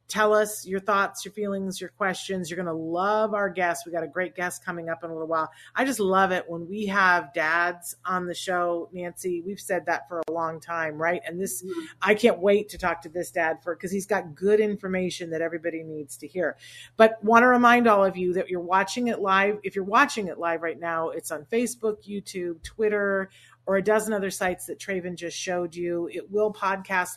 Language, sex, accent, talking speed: English, female, American, 230 wpm